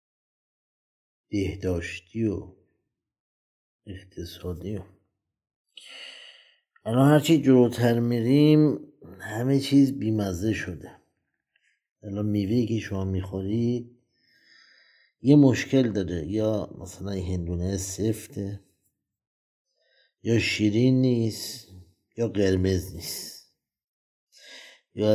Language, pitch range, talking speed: Persian, 95-120 Hz, 75 wpm